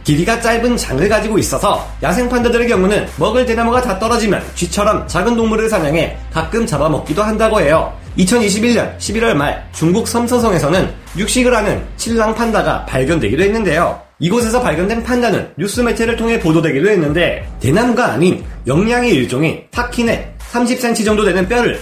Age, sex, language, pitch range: 30-49, male, Korean, 180-230 Hz